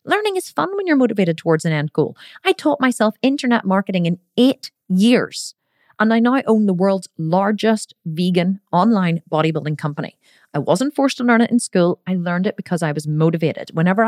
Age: 30-49